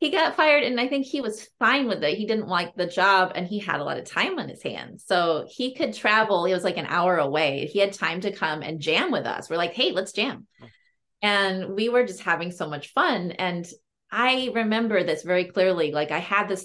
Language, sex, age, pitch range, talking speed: English, female, 30-49, 165-210 Hz, 245 wpm